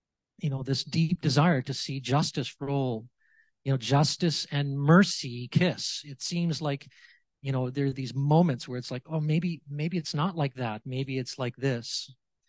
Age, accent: 40-59, American